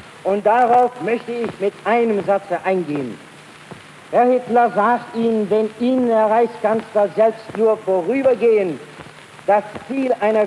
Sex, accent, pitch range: male, German, 210-245 Hz